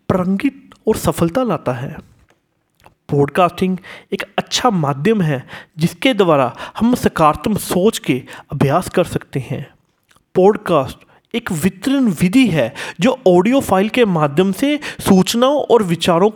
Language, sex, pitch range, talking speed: Hindi, male, 155-235 Hz, 125 wpm